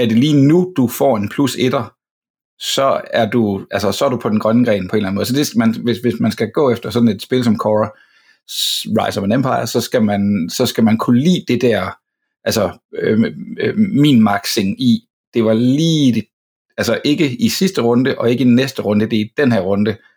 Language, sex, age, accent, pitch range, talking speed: Danish, male, 60-79, native, 105-130 Hz, 230 wpm